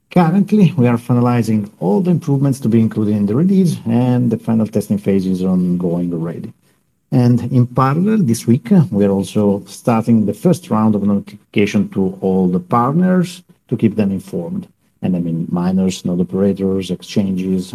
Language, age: English, 50-69